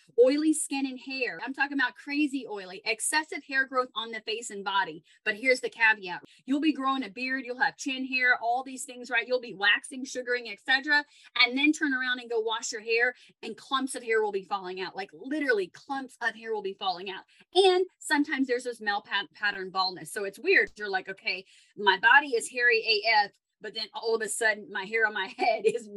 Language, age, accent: English, 30-49, American